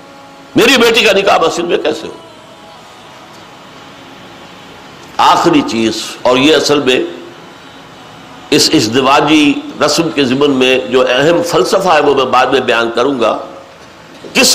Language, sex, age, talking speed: Urdu, male, 60-79, 130 wpm